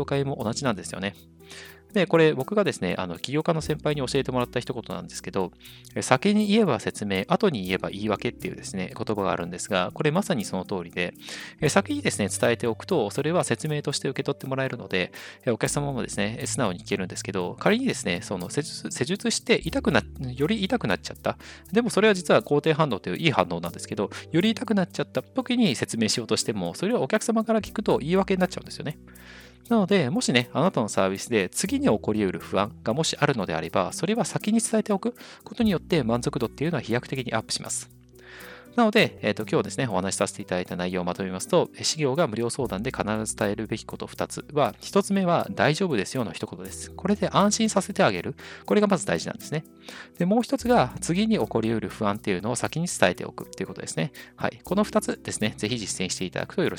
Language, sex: Japanese, male